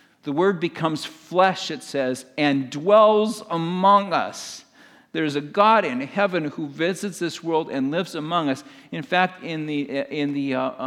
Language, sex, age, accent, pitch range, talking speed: English, male, 50-69, American, 135-165 Hz, 160 wpm